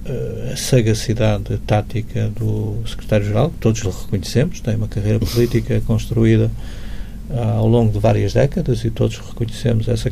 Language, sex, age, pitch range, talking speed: Portuguese, male, 50-69, 105-120 Hz, 130 wpm